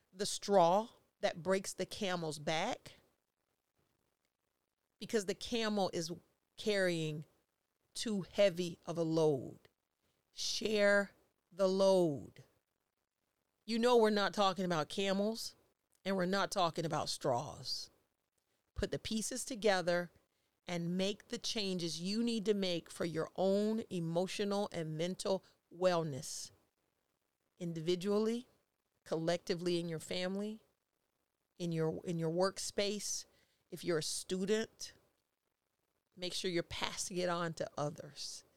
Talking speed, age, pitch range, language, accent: 115 wpm, 40-59, 170-205 Hz, English, American